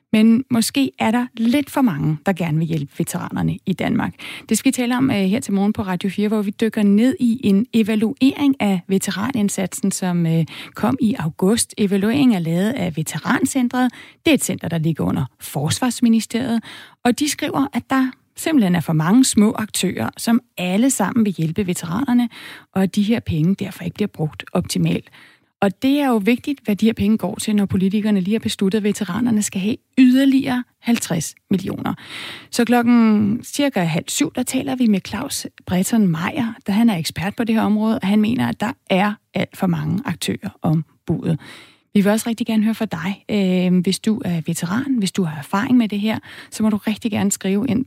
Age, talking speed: 30-49, 195 wpm